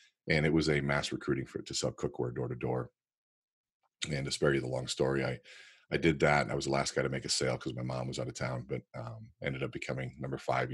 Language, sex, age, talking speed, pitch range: English, male, 40-59, 275 wpm, 65-75 Hz